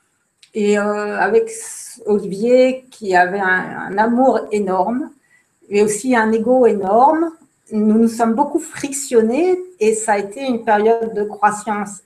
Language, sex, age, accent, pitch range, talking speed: French, female, 50-69, French, 195-240 Hz, 140 wpm